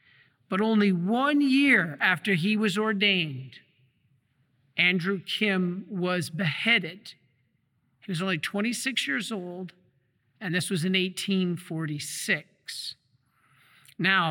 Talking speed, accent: 100 wpm, American